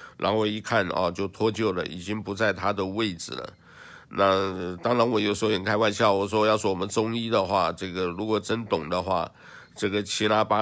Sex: male